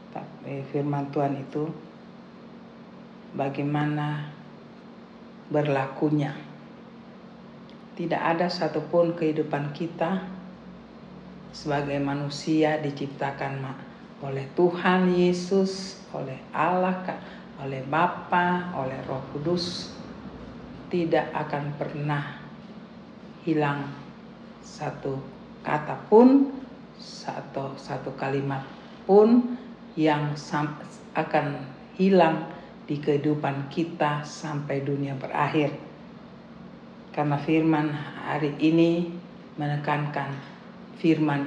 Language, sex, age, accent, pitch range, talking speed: Indonesian, female, 50-69, native, 145-195 Hz, 70 wpm